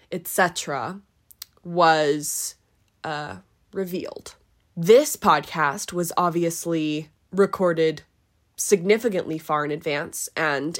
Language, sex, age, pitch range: English, female, 20-39, 160-190 Hz